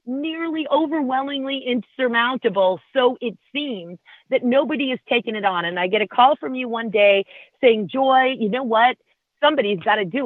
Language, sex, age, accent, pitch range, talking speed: English, female, 40-59, American, 195-255 Hz, 175 wpm